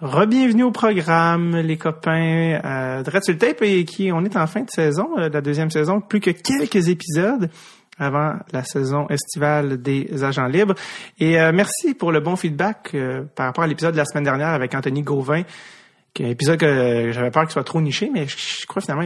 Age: 30-49